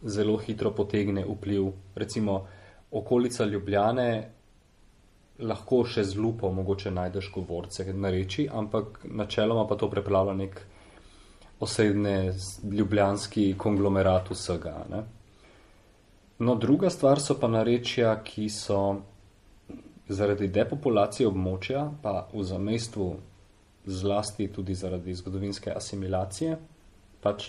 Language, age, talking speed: Italian, 30-49, 95 wpm